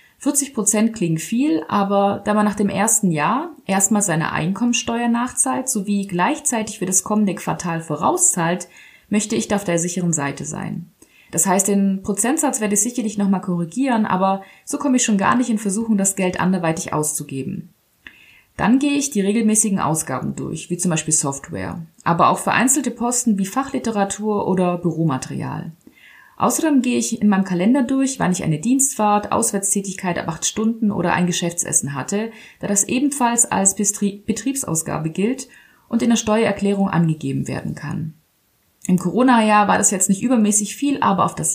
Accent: German